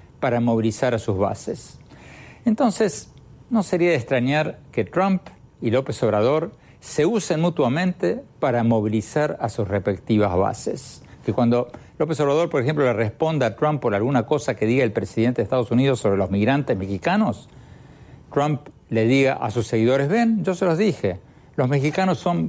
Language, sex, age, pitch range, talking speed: Spanish, male, 60-79, 115-160 Hz, 165 wpm